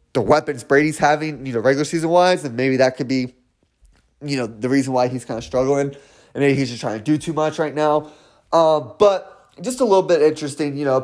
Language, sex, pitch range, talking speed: English, male, 130-175 Hz, 235 wpm